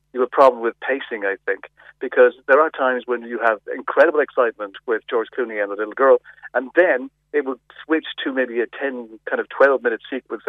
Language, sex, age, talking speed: English, male, 40-59, 210 wpm